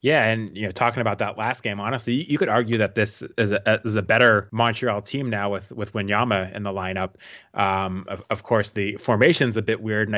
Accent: American